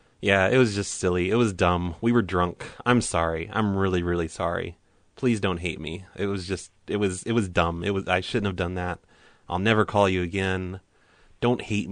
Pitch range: 90-115 Hz